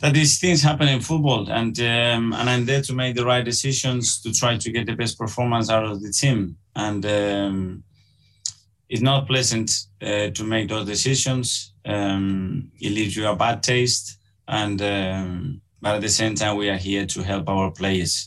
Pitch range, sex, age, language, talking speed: 100-120 Hz, male, 30-49, English, 190 wpm